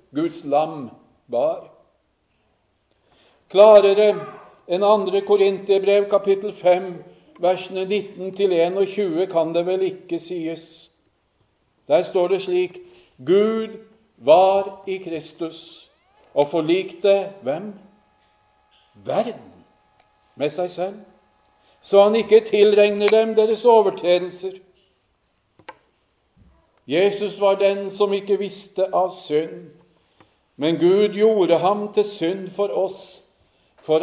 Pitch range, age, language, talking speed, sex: 160-195 Hz, 50-69, English, 95 wpm, male